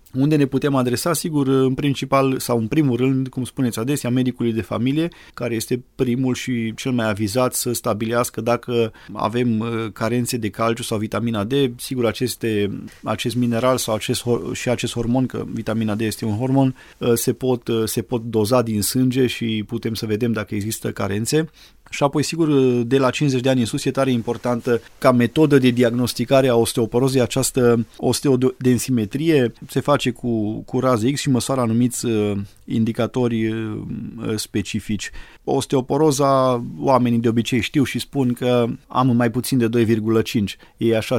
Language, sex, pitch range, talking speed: Romanian, male, 115-135 Hz, 155 wpm